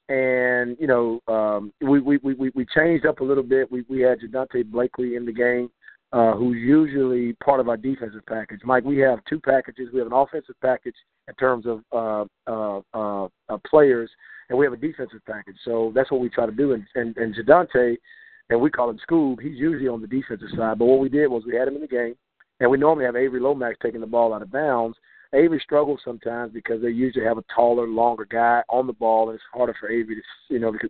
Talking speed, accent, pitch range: 230 wpm, American, 115-135 Hz